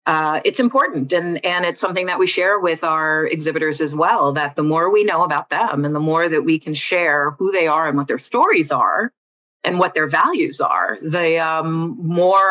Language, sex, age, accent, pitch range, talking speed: English, female, 40-59, American, 155-185 Hz, 215 wpm